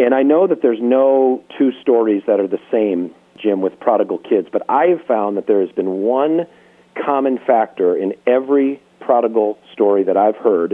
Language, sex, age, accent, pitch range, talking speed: English, male, 40-59, American, 110-155 Hz, 190 wpm